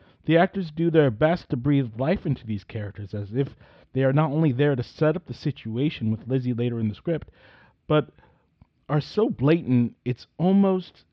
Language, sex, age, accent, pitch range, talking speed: English, male, 30-49, American, 125-160 Hz, 190 wpm